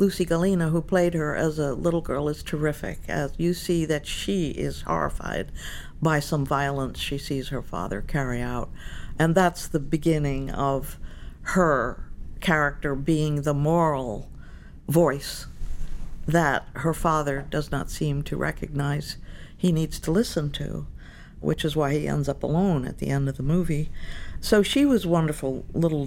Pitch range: 135-175 Hz